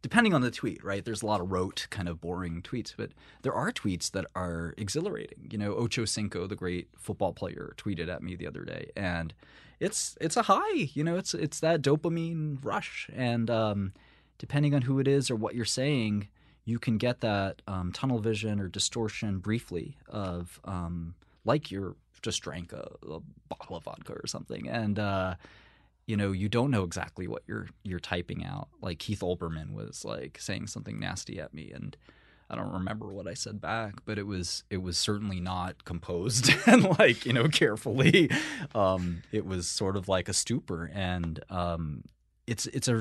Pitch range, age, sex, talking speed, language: 90-115 Hz, 20-39, male, 195 wpm, English